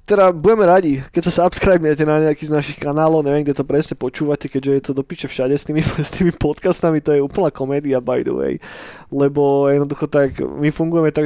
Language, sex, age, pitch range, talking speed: Slovak, male, 20-39, 135-155 Hz, 210 wpm